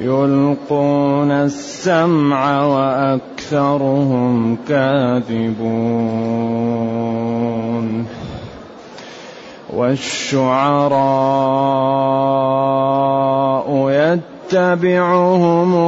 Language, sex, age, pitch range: Arabic, male, 30-49, 125-145 Hz